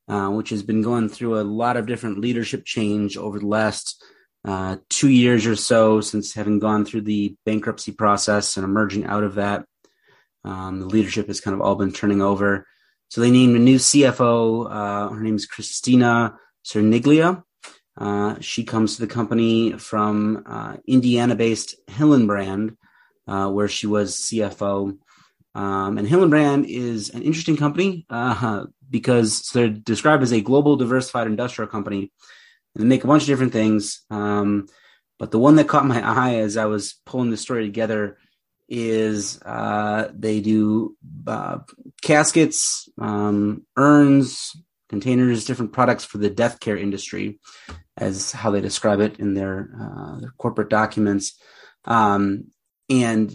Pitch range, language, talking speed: 105-120 Hz, English, 155 wpm